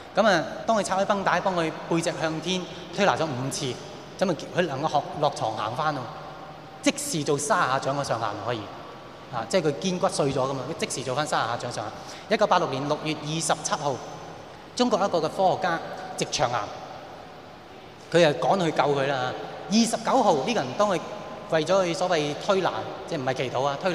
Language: Chinese